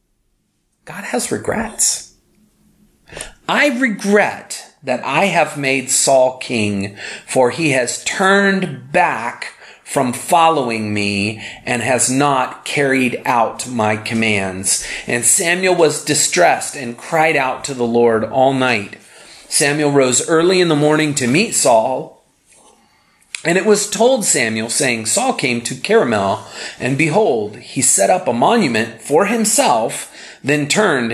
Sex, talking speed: male, 130 wpm